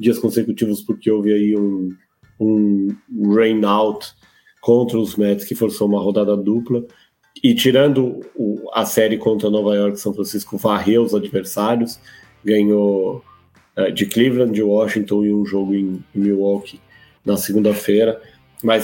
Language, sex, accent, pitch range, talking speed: English, male, Brazilian, 100-115 Hz, 140 wpm